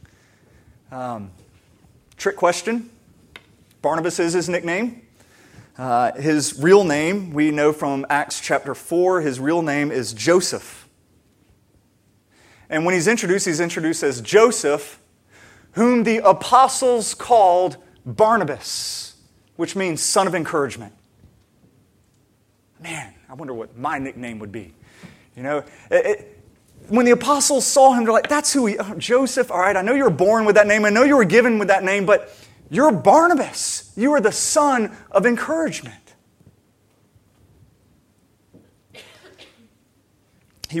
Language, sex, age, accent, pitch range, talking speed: English, male, 30-49, American, 120-195 Hz, 130 wpm